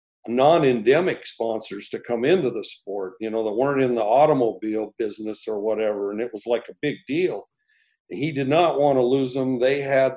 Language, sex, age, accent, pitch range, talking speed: English, male, 50-69, American, 110-135 Hz, 195 wpm